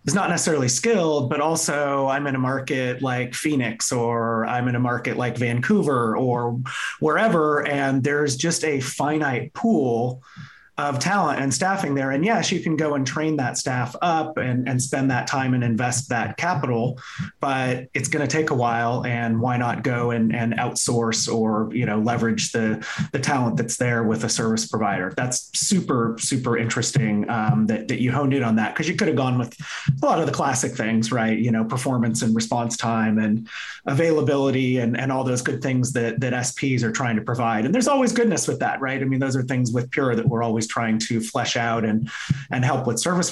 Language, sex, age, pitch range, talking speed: English, male, 30-49, 115-145 Hz, 210 wpm